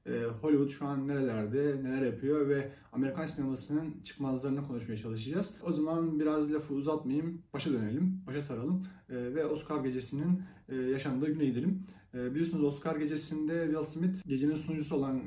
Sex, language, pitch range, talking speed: male, Turkish, 130-155 Hz, 140 wpm